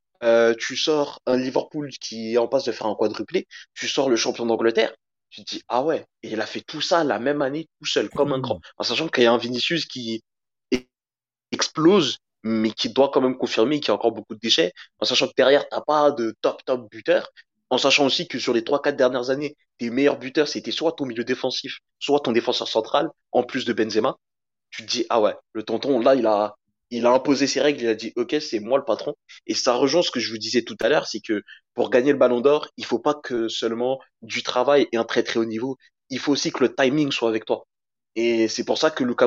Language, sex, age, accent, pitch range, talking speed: French, male, 20-39, French, 115-140 Hz, 250 wpm